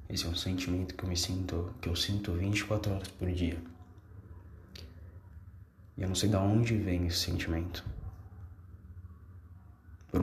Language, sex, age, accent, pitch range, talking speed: Portuguese, male, 20-39, Brazilian, 85-95 Hz, 145 wpm